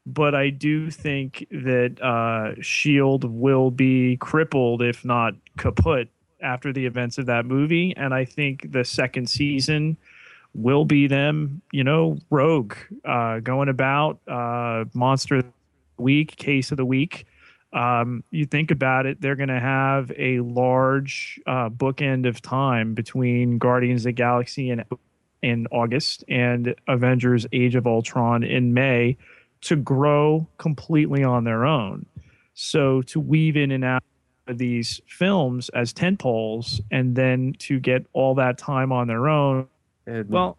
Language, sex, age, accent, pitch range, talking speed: English, male, 30-49, American, 120-145 Hz, 150 wpm